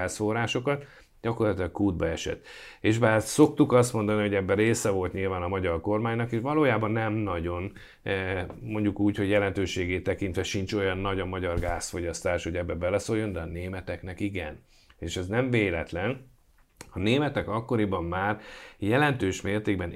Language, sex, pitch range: Hungarian, male, 90-115 Hz